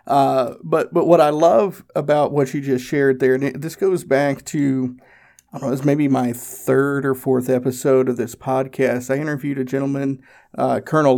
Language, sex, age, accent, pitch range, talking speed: English, male, 50-69, American, 130-145 Hz, 205 wpm